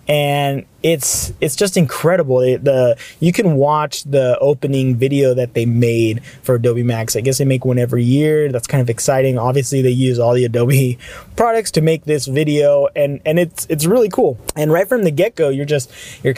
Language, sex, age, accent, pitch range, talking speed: English, male, 20-39, American, 125-155 Hz, 200 wpm